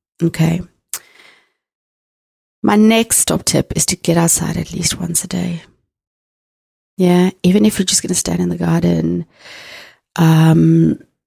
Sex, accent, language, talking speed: female, British, English, 140 wpm